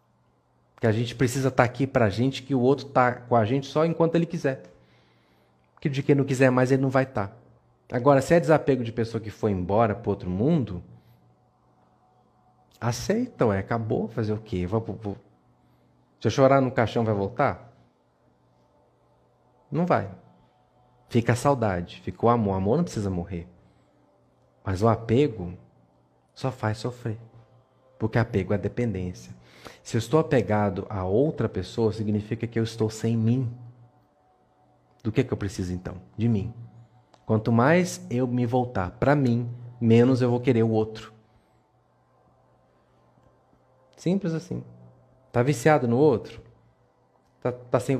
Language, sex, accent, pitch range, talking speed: Portuguese, male, Brazilian, 105-130 Hz, 150 wpm